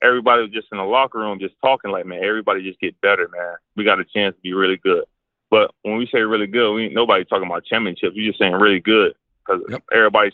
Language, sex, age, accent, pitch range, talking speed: English, male, 20-39, American, 100-120 Hz, 250 wpm